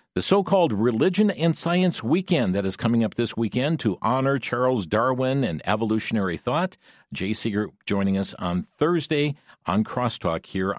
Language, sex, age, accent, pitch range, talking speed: English, male, 50-69, American, 100-135 Hz, 155 wpm